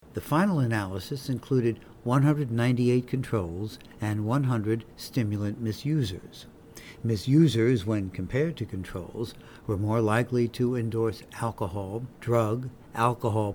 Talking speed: 100 wpm